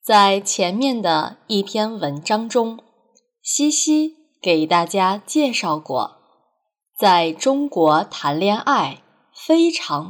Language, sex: Chinese, female